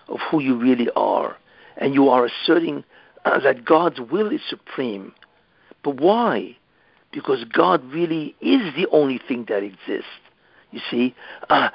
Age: 60-79